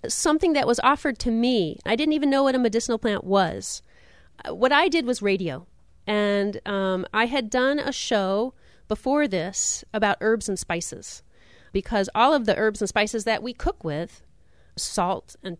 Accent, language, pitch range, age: American, English, 185-240 Hz, 40-59